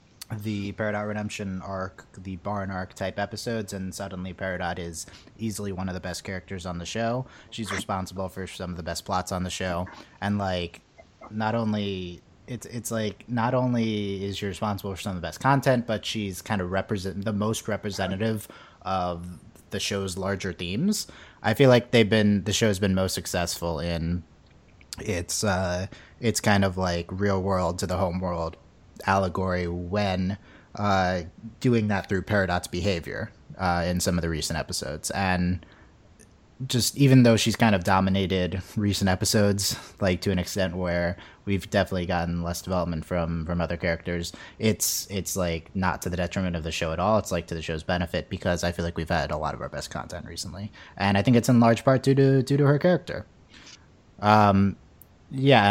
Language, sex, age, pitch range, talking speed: English, male, 30-49, 90-105 Hz, 185 wpm